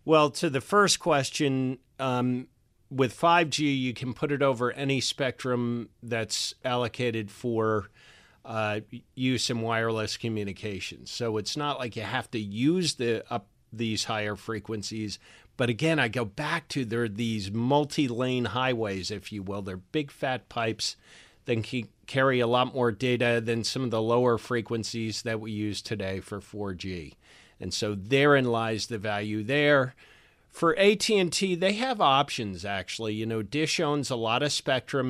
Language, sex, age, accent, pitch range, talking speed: English, male, 40-59, American, 110-130 Hz, 160 wpm